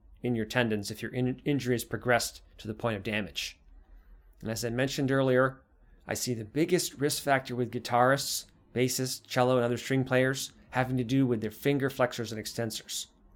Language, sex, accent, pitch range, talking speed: English, male, American, 110-135 Hz, 180 wpm